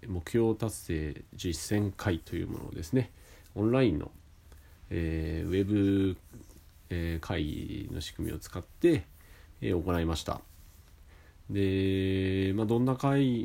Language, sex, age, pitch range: Japanese, male, 40-59, 80-105 Hz